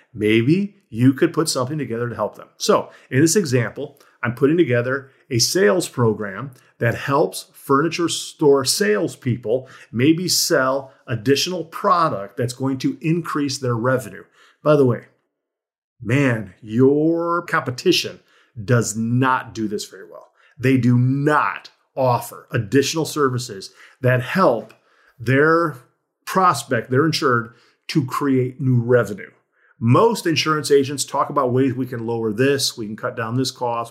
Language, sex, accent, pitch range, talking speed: English, male, American, 120-160 Hz, 140 wpm